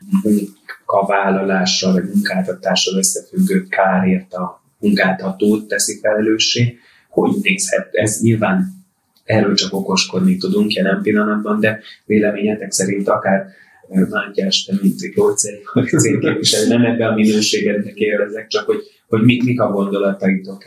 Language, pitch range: Hungarian, 95-120 Hz